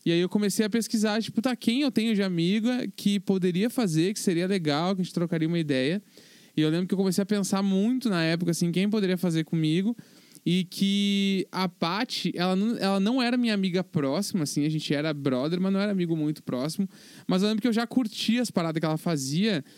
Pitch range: 165-200 Hz